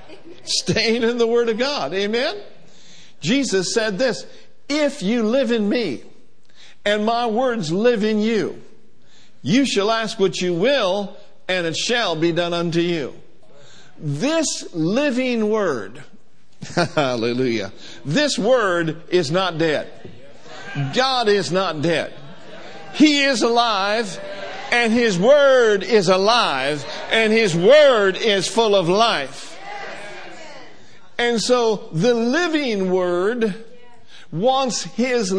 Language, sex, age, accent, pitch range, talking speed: English, male, 60-79, American, 195-250 Hz, 115 wpm